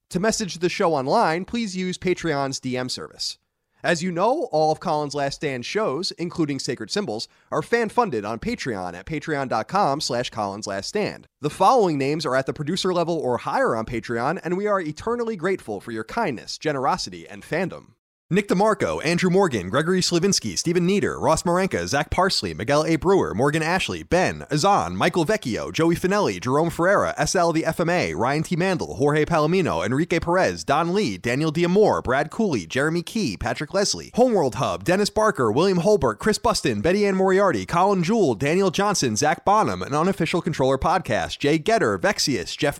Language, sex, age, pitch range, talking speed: English, male, 30-49, 150-195 Hz, 170 wpm